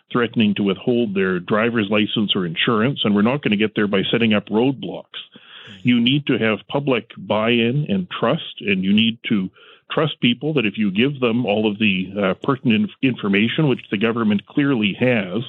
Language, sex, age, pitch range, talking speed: English, male, 40-59, 105-135 Hz, 190 wpm